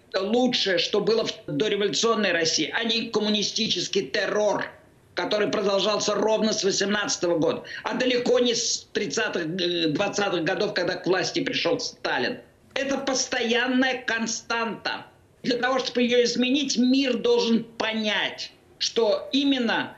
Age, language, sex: 50-69, Russian, male